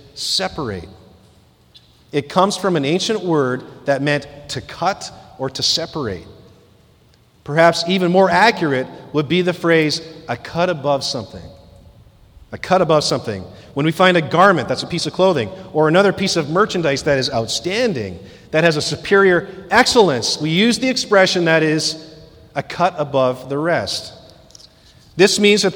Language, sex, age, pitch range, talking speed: English, male, 40-59, 145-190 Hz, 155 wpm